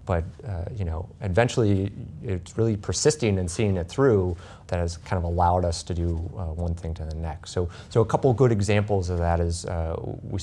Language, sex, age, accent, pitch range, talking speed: English, male, 30-49, American, 85-105 Hz, 220 wpm